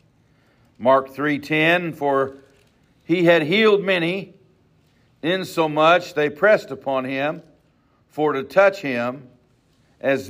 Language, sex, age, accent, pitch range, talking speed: English, male, 50-69, American, 135-175 Hz, 100 wpm